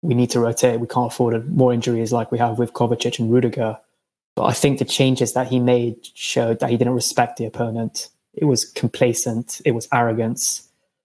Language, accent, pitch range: English, British, 120-130 Hz